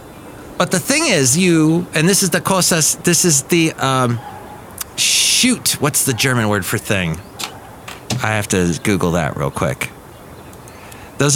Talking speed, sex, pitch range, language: 155 wpm, male, 100-155 Hz, English